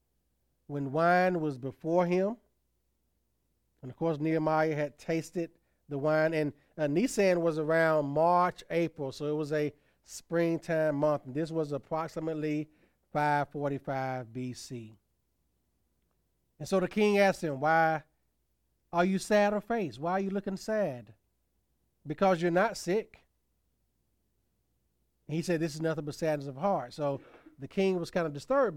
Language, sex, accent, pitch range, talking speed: English, male, American, 130-170 Hz, 145 wpm